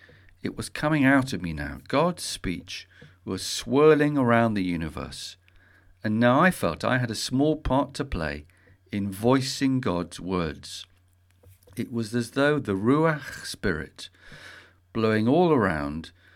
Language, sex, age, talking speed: English, male, 50-69, 145 wpm